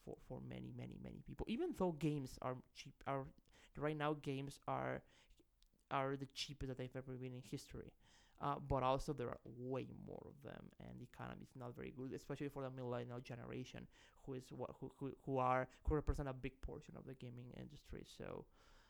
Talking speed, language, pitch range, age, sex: 200 wpm, English, 130-160 Hz, 20-39, male